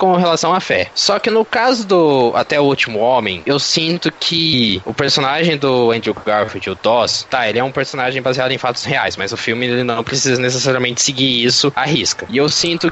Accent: Brazilian